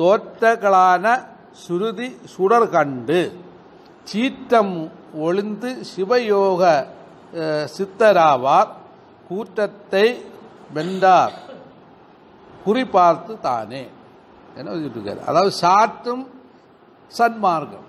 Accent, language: native, Tamil